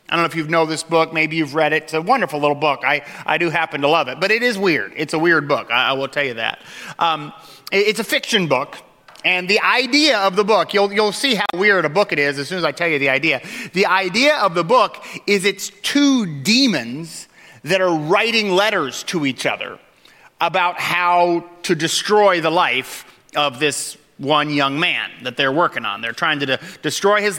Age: 30-49